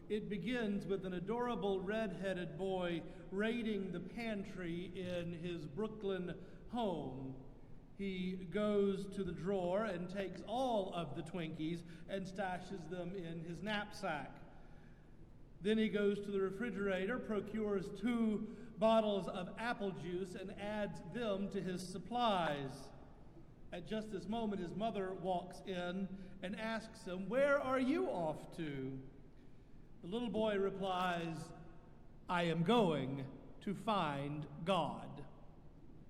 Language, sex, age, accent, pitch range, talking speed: English, male, 50-69, American, 175-215 Hz, 125 wpm